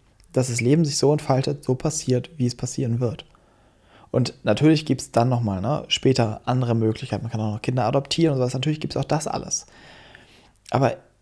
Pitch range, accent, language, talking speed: 125-150 Hz, German, German, 185 wpm